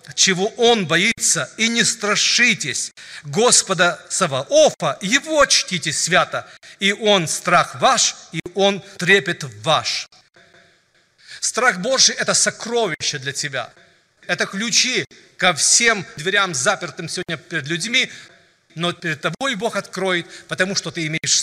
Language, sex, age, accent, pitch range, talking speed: Russian, male, 40-59, native, 175-220 Hz, 125 wpm